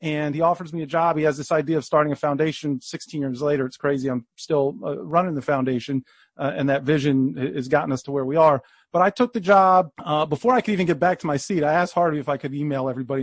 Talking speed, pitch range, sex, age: 270 wpm, 145-185 Hz, male, 40-59